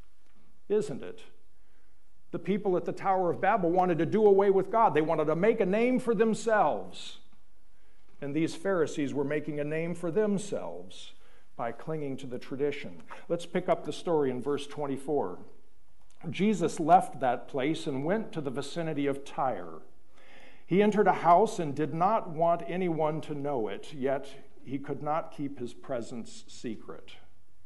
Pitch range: 135-185 Hz